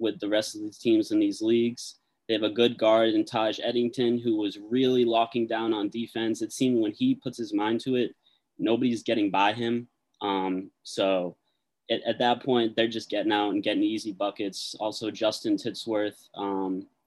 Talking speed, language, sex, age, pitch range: 195 wpm, English, male, 20-39, 105-120 Hz